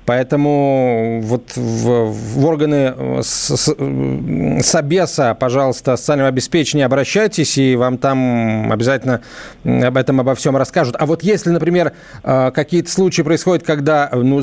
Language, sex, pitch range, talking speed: Russian, male, 125-175 Hz, 125 wpm